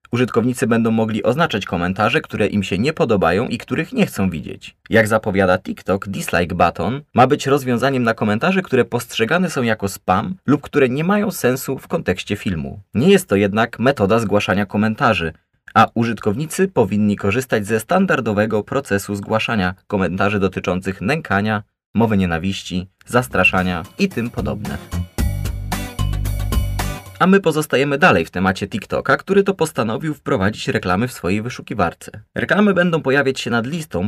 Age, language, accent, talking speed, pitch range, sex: 20-39, Polish, native, 145 wpm, 100-135 Hz, male